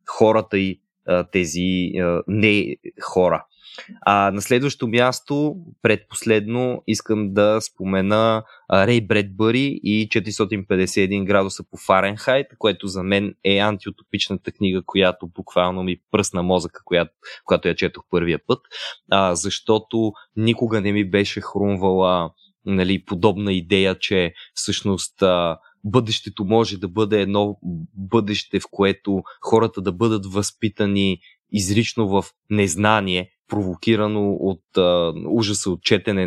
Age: 20-39